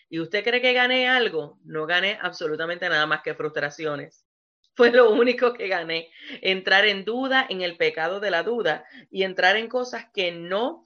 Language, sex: English, female